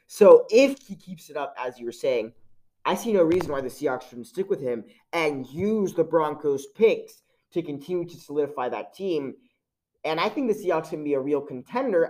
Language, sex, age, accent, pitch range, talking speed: English, male, 20-39, American, 145-200 Hz, 210 wpm